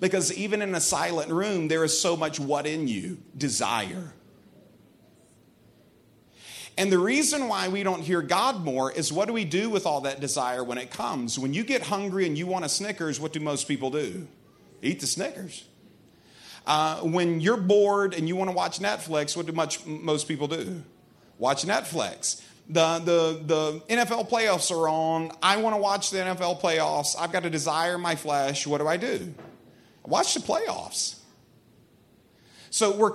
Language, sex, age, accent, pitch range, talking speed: English, male, 40-59, American, 155-195 Hz, 180 wpm